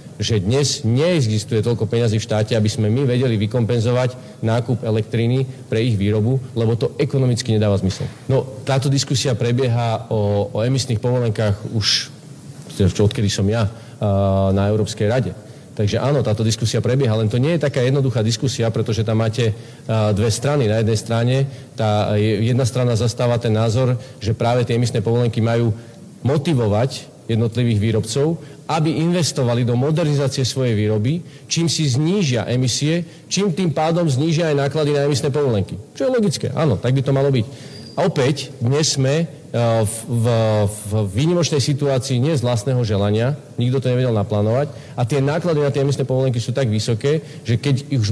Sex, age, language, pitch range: male, 40-59, Slovak, 115-140 Hz